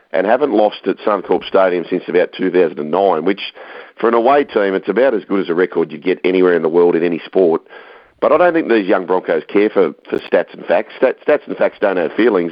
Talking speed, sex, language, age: 235 wpm, male, English, 50-69